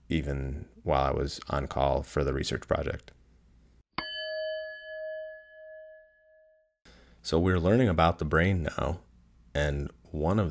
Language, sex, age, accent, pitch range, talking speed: English, male, 30-49, American, 70-85 Hz, 115 wpm